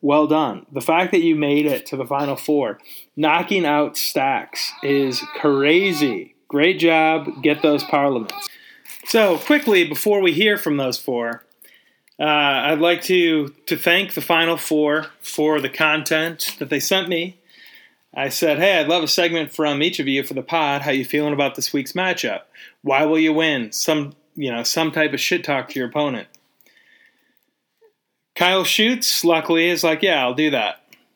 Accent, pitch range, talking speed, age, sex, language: American, 140-175 Hz, 175 wpm, 30-49, male, English